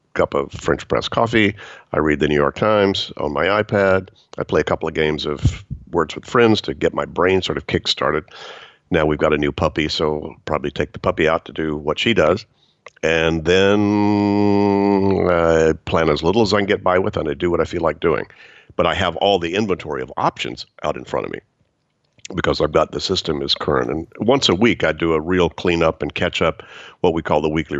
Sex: male